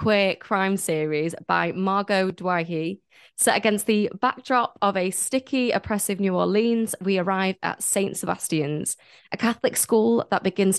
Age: 20-39